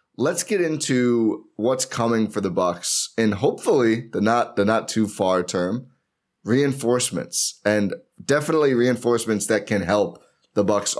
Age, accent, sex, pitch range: 20-39, American, male, 105-130 Hz